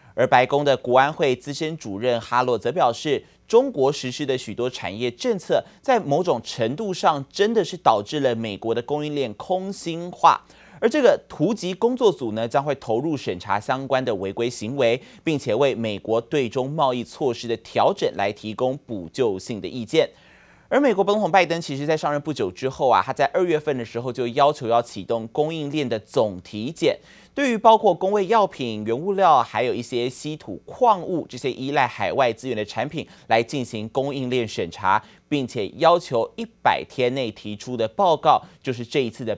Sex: male